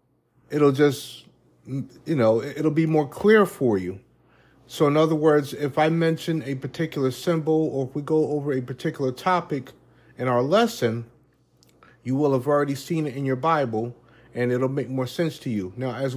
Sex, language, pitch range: male, English, 125-160 Hz